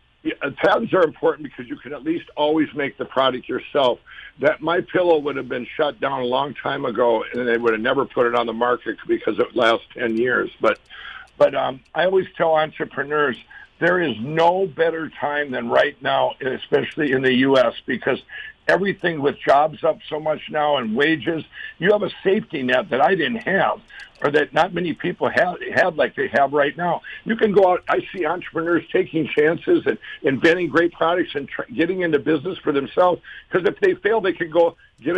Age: 60-79